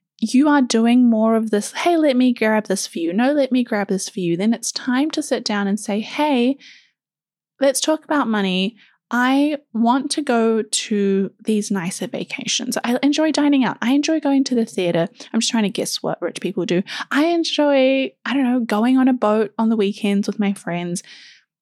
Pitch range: 210-275 Hz